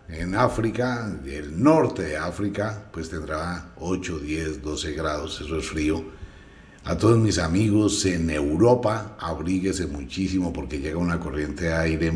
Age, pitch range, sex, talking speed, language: 60-79, 75-100 Hz, male, 145 wpm, Spanish